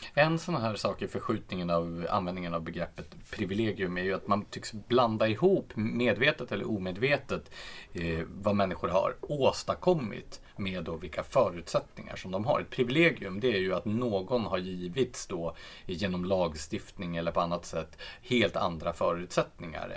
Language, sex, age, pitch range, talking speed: Swedish, male, 30-49, 90-120 Hz, 150 wpm